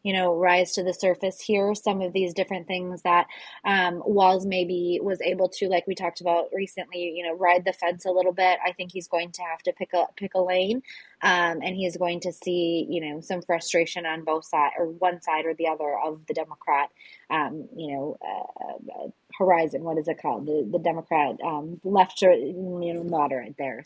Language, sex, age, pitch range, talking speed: English, female, 20-39, 170-185 Hz, 220 wpm